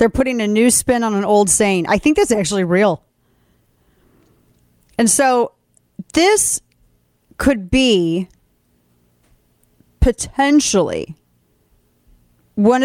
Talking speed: 100 wpm